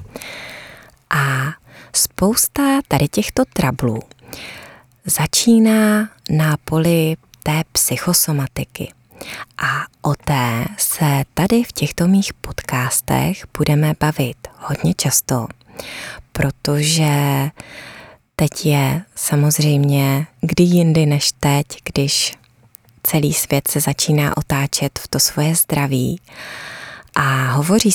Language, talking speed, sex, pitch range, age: Czech, 90 wpm, female, 135-160 Hz, 20-39